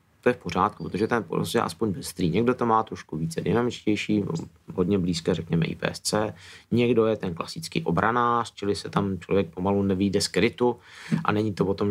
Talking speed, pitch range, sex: 185 wpm, 100-115 Hz, male